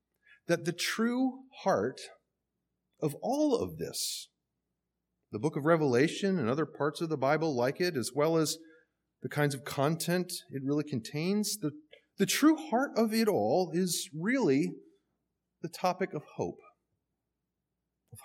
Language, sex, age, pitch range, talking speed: English, male, 30-49, 110-180 Hz, 145 wpm